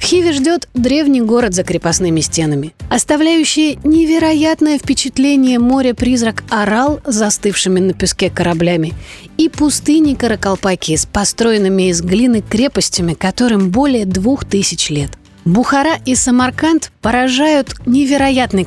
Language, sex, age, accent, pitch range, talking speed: Russian, female, 30-49, native, 190-275 Hz, 110 wpm